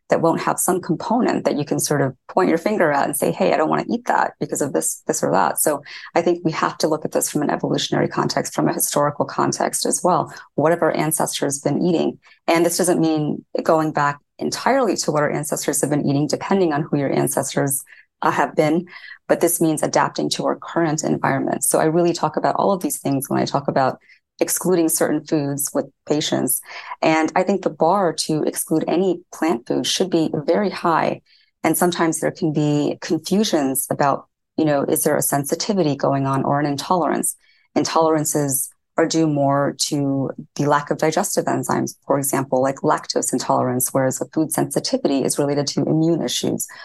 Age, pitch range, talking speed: 20-39, 145-170 Hz, 205 wpm